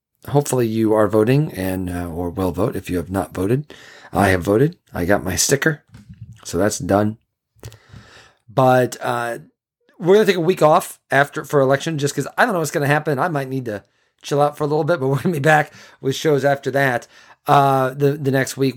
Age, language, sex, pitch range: 40-59, English, male, 110-140 Hz